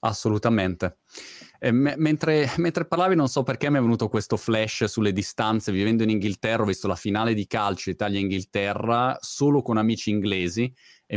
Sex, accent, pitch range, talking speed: male, native, 105-130 Hz, 160 wpm